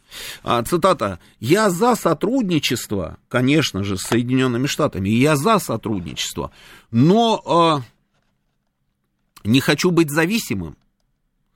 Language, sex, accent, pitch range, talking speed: Russian, male, native, 115-160 Hz, 95 wpm